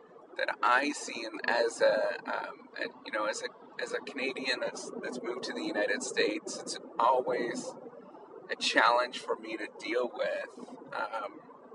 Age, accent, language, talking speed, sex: 30-49, American, English, 165 wpm, male